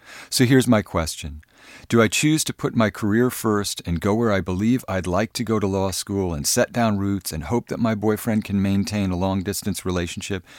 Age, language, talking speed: 50-69, English, 215 wpm